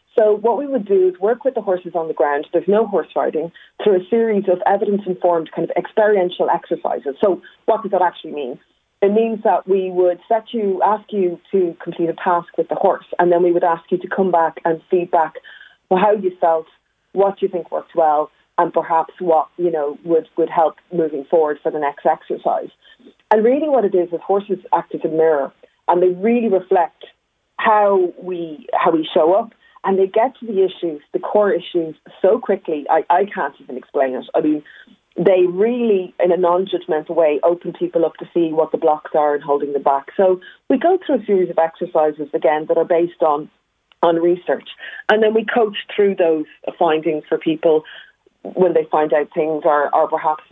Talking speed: 205 wpm